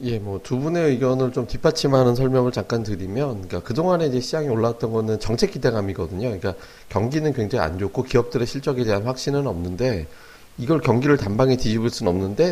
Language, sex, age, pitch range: Korean, male, 40-59, 105-140 Hz